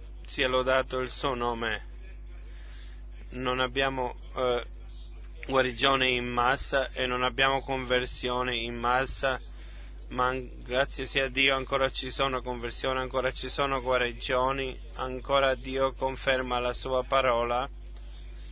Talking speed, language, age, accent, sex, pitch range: 115 wpm, Italian, 20-39, native, male, 115-135 Hz